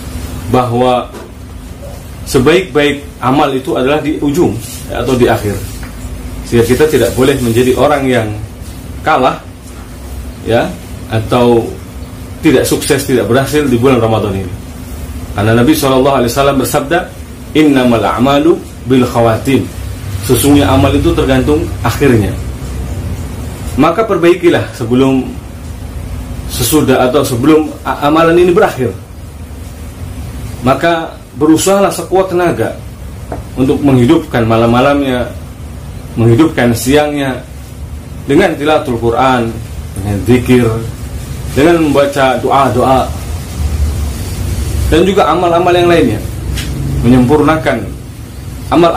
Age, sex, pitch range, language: 30-49, male, 95-145 Hz, Indonesian